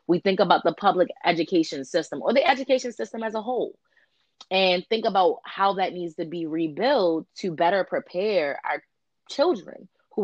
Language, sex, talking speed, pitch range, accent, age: English, female, 170 wpm, 150-185 Hz, American, 20-39